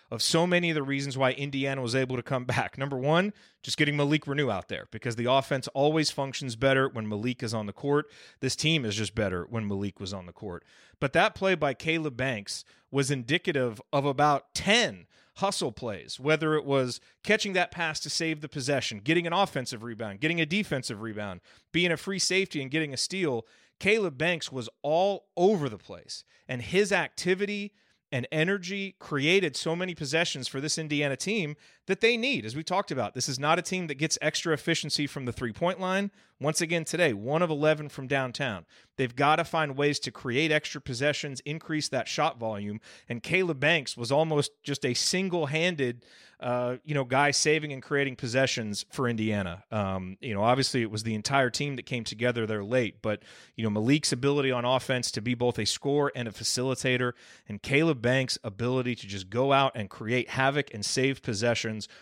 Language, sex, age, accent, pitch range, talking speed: English, male, 30-49, American, 120-155 Hz, 200 wpm